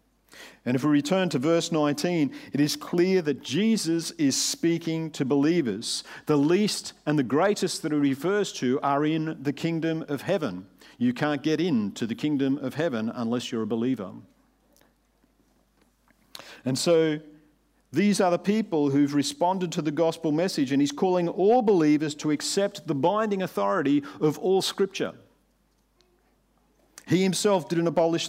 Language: English